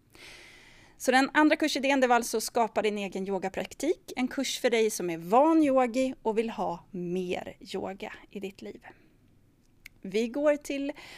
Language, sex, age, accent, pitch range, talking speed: Swedish, female, 30-49, native, 195-275 Hz, 160 wpm